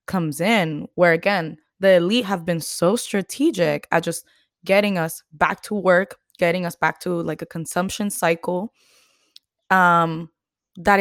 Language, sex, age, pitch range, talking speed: English, female, 20-39, 155-195 Hz, 145 wpm